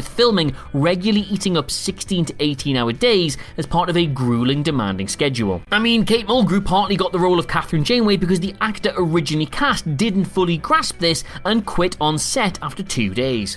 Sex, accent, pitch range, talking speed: male, British, 145-210 Hz, 190 wpm